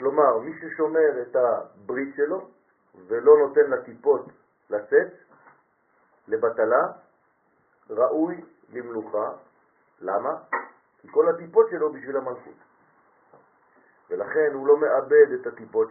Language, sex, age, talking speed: French, male, 50-69, 100 wpm